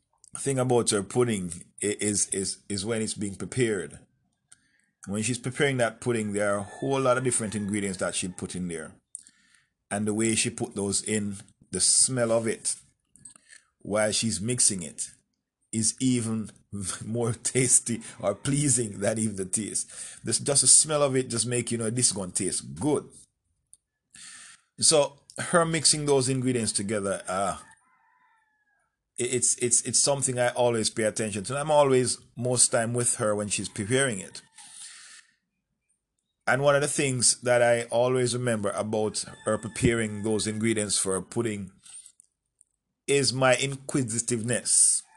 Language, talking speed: English, 150 wpm